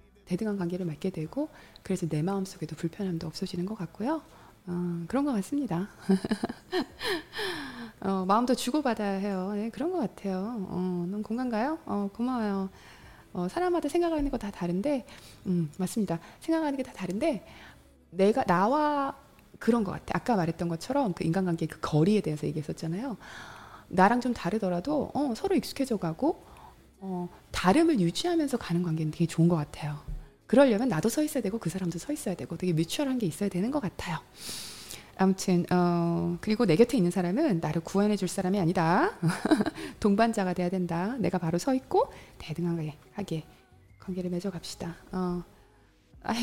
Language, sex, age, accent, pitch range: Korean, female, 20-39, native, 175-250 Hz